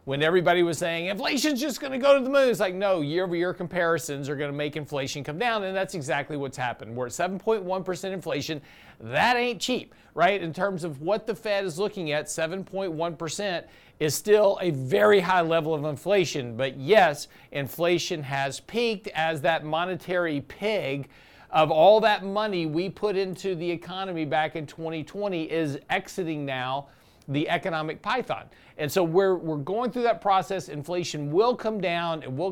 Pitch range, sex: 150-195 Hz, male